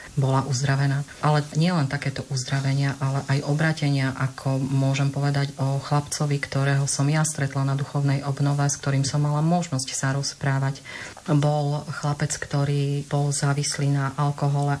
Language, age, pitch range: Slovak, 30-49, 140-145 Hz